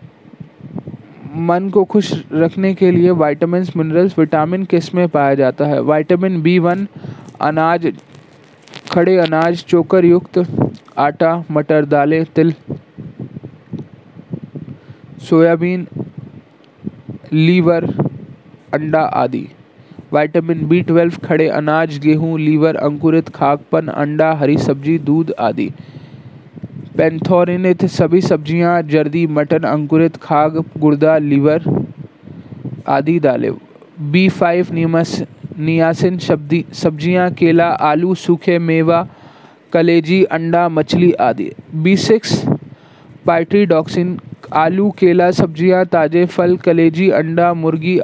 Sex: male